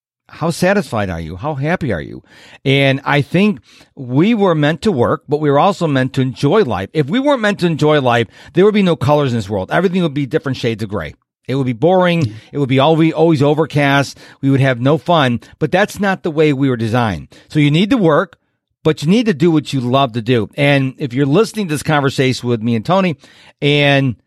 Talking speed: 235 wpm